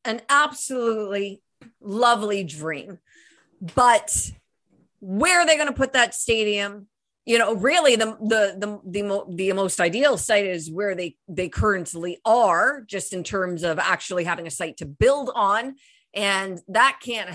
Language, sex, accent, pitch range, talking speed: English, female, American, 200-260 Hz, 150 wpm